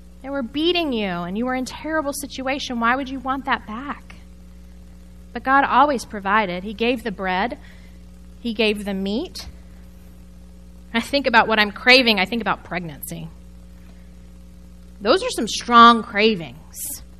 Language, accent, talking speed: English, American, 150 wpm